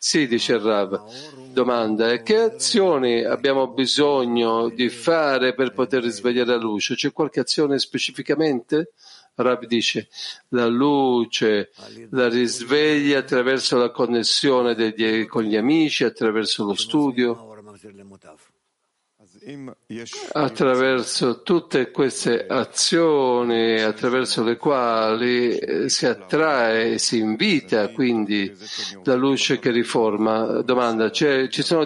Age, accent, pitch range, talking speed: 50-69, native, 115-150 Hz, 100 wpm